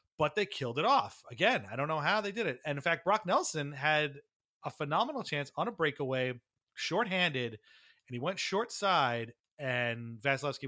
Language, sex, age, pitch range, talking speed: English, male, 30-49, 120-180 Hz, 185 wpm